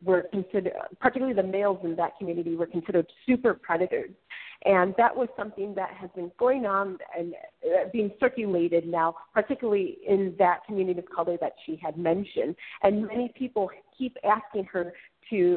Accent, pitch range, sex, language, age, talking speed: American, 175-220 Hz, female, English, 40-59, 160 wpm